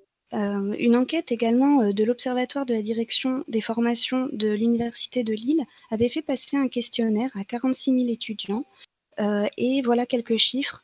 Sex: female